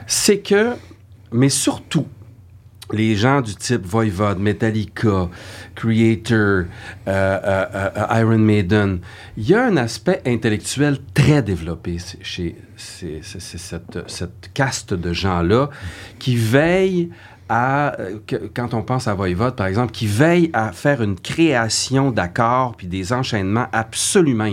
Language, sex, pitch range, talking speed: French, male, 100-135 Hz, 135 wpm